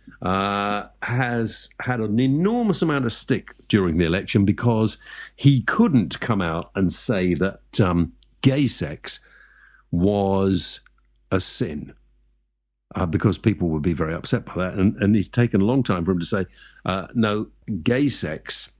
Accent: British